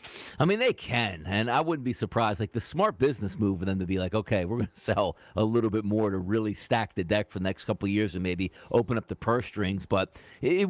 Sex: male